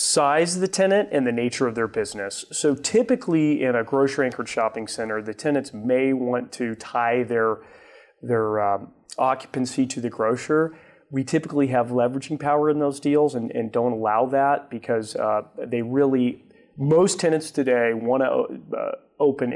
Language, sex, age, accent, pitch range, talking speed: English, male, 30-49, American, 115-140 Hz, 170 wpm